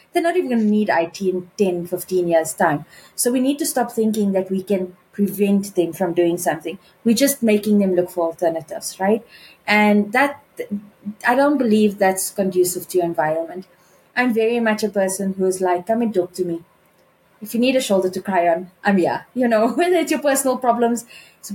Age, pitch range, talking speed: 20-39, 180-220 Hz, 210 wpm